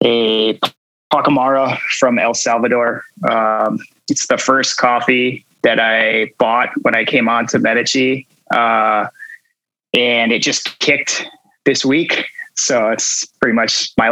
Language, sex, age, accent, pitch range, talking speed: English, male, 20-39, American, 120-140 Hz, 130 wpm